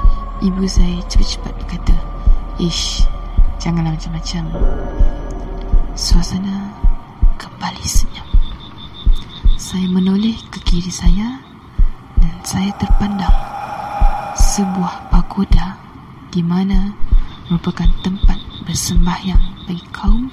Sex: female